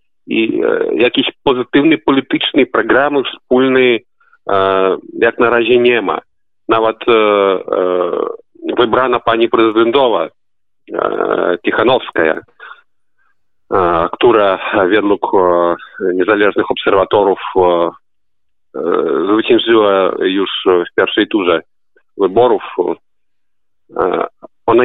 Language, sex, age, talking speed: Polish, male, 40-59, 85 wpm